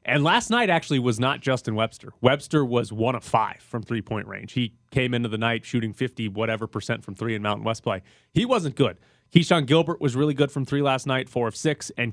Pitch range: 110-140 Hz